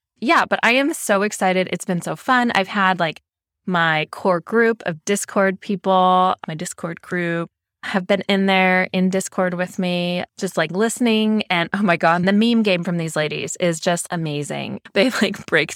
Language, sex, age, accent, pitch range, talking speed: English, female, 20-39, American, 155-195 Hz, 185 wpm